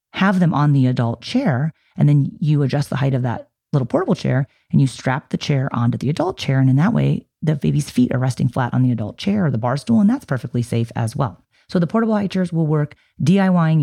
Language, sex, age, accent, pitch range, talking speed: English, female, 30-49, American, 125-180 Hz, 250 wpm